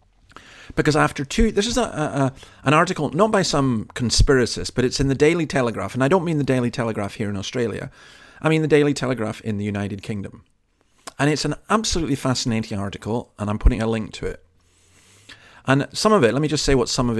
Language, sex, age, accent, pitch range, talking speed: English, male, 40-59, British, 110-140 Hz, 220 wpm